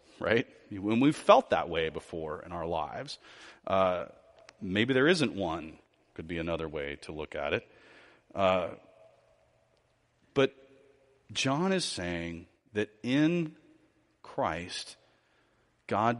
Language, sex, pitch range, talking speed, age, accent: English, male, 95-125 Hz, 120 wpm, 40-59, American